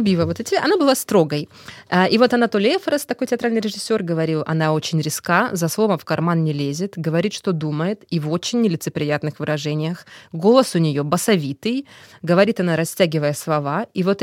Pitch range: 155-205 Hz